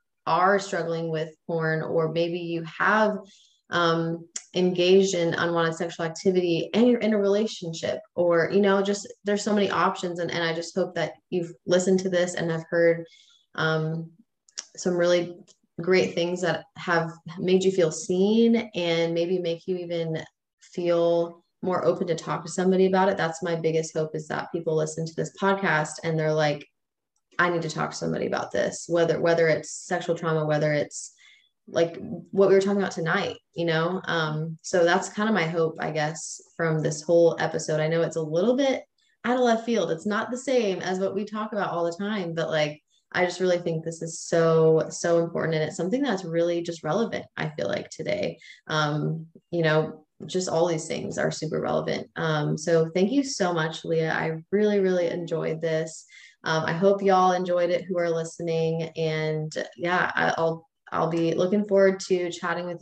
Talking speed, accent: 190 wpm, American